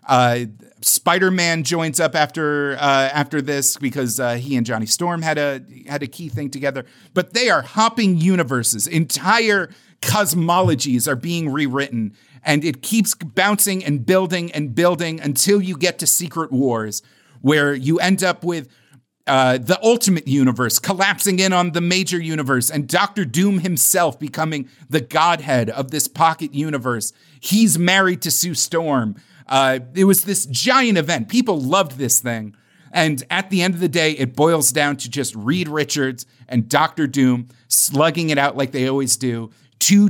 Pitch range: 130-170 Hz